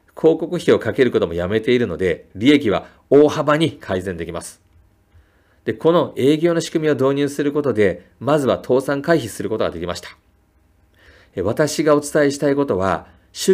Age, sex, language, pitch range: 40-59, male, Japanese, 95-145 Hz